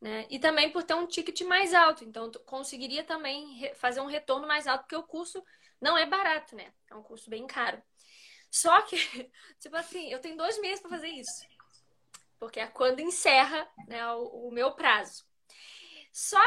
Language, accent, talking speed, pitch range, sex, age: Portuguese, Brazilian, 185 wpm, 255-360 Hz, female, 10-29